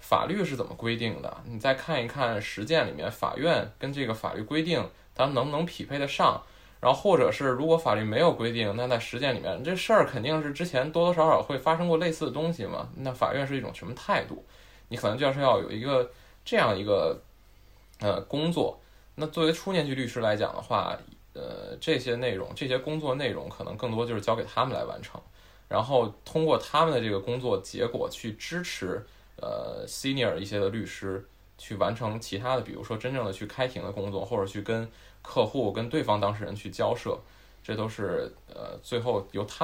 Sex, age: male, 20-39